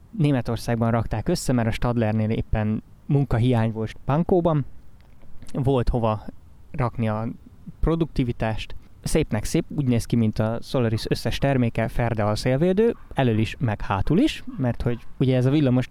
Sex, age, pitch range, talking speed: male, 20-39, 110-140 Hz, 145 wpm